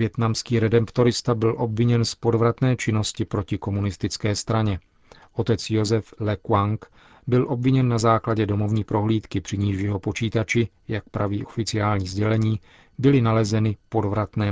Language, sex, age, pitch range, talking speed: Czech, male, 40-59, 105-115 Hz, 130 wpm